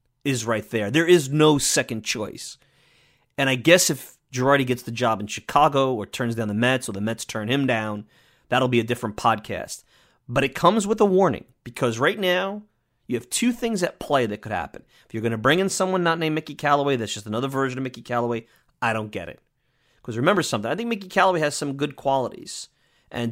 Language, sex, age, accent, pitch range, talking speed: English, male, 30-49, American, 115-150 Hz, 220 wpm